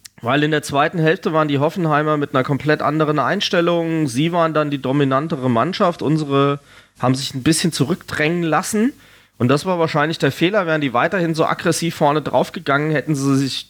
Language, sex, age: German, male, 30-49